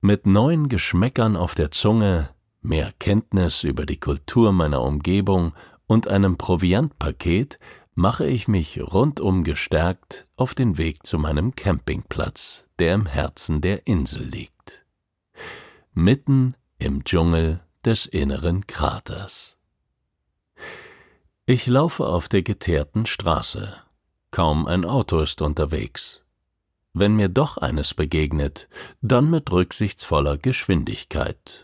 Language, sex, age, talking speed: German, male, 50-69, 110 wpm